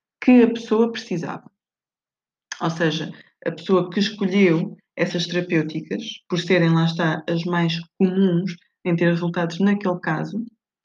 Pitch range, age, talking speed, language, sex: 165-195 Hz, 20-39, 135 wpm, Portuguese, female